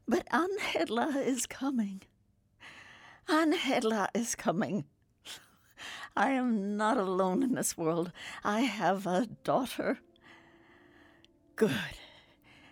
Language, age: English, 60-79